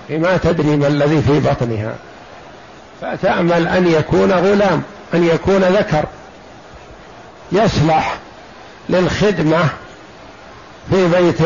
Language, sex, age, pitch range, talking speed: Arabic, male, 60-79, 150-195 Hz, 90 wpm